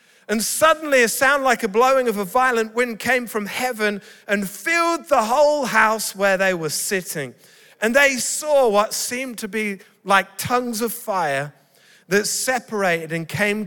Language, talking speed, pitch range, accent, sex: English, 165 wpm, 195-250 Hz, British, male